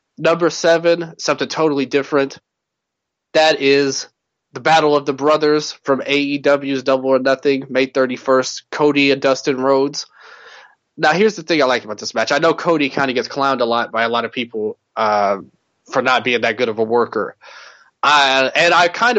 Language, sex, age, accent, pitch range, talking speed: English, male, 20-39, American, 130-150 Hz, 180 wpm